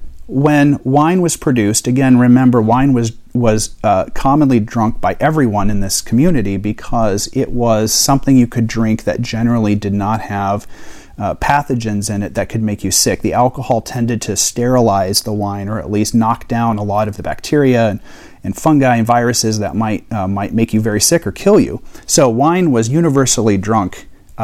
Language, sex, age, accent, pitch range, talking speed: English, male, 40-59, American, 105-135 Hz, 185 wpm